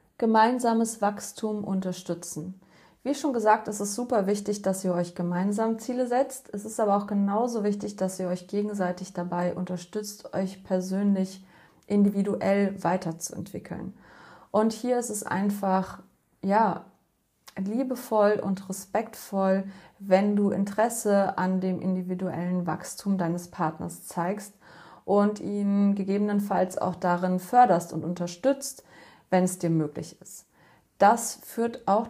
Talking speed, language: 125 wpm, German